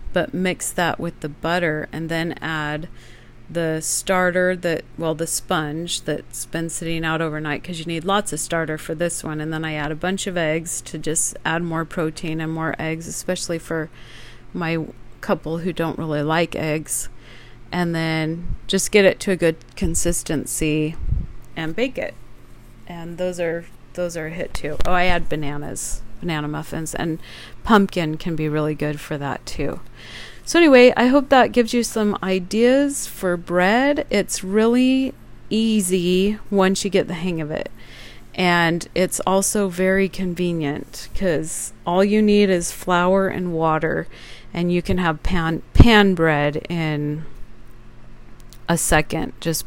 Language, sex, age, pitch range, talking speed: English, female, 40-59, 150-180 Hz, 160 wpm